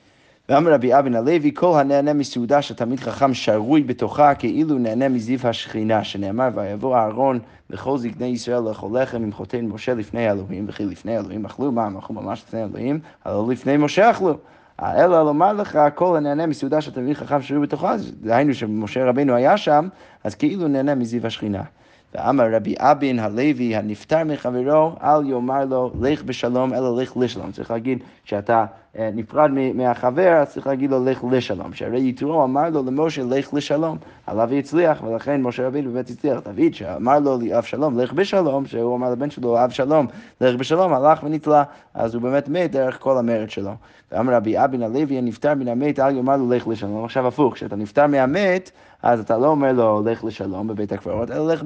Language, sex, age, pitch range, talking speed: Hebrew, male, 30-49, 115-145 Hz, 160 wpm